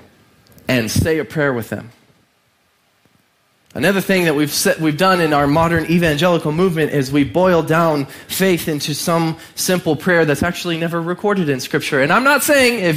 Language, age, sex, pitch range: English, 20-39, male, 135-170 Hz